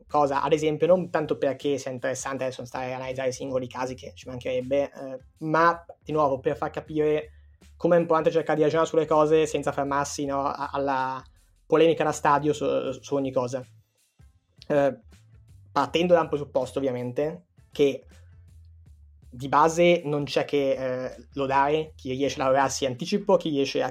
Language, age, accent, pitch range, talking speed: Italian, 20-39, native, 130-150 Hz, 165 wpm